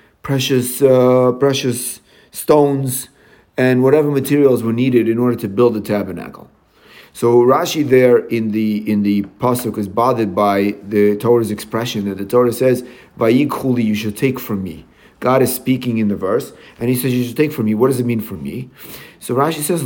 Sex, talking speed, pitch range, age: male, 185 wpm, 105-130 Hz, 40-59